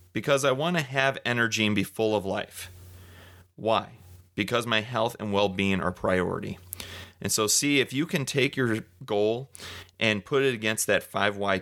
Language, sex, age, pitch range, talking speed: English, male, 30-49, 100-125 Hz, 175 wpm